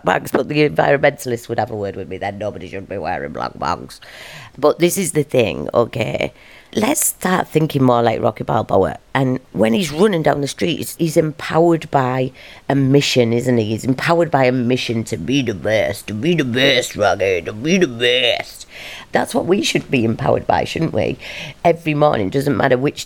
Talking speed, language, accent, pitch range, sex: 195 wpm, English, British, 120-155 Hz, female